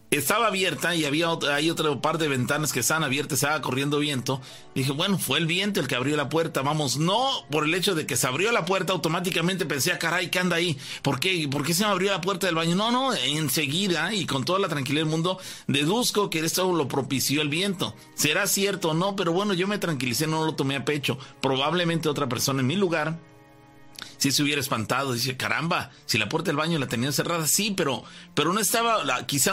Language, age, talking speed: Spanish, 40-59, 230 wpm